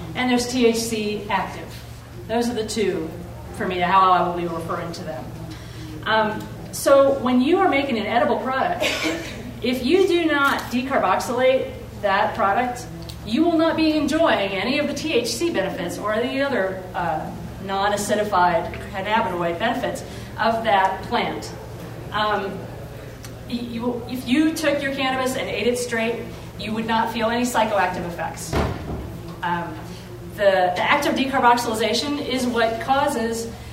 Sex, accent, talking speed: female, American, 140 wpm